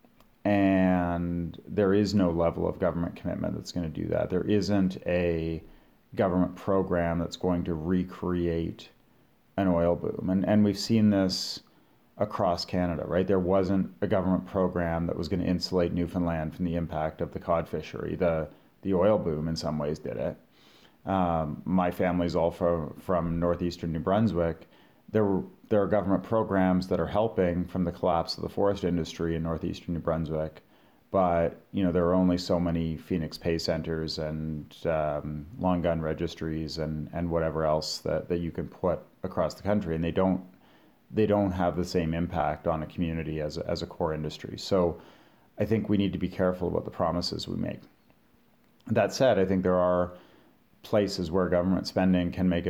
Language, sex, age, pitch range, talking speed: English, male, 30-49, 85-95 Hz, 180 wpm